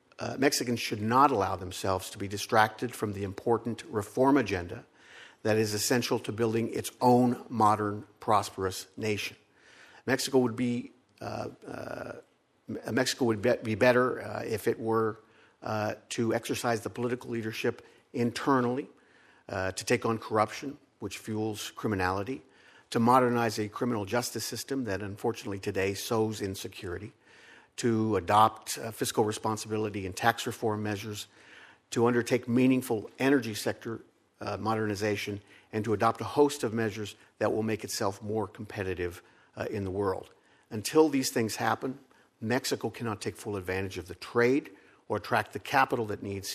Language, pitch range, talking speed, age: English, 105-120 Hz, 145 wpm, 50-69